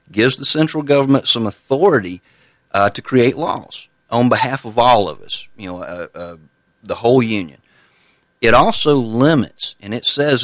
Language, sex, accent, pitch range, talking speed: English, male, American, 100-130 Hz, 165 wpm